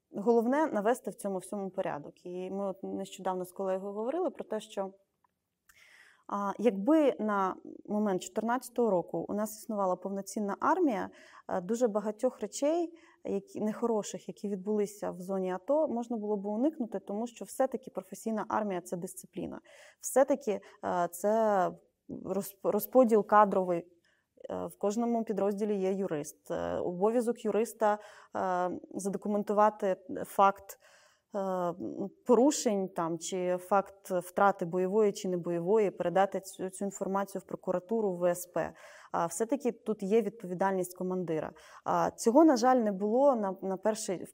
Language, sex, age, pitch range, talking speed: Ukrainian, female, 20-39, 190-225 Hz, 120 wpm